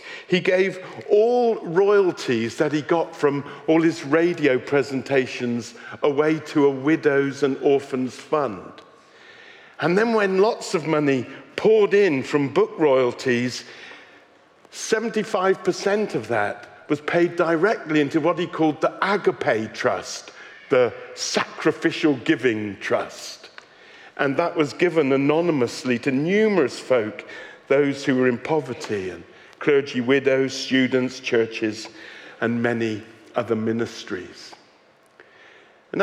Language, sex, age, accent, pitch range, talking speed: English, male, 50-69, British, 125-175 Hz, 115 wpm